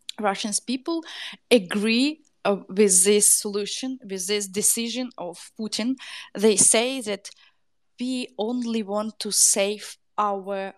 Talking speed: 115 wpm